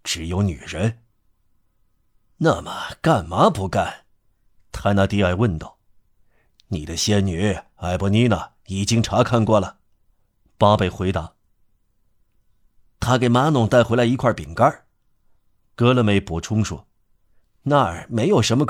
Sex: male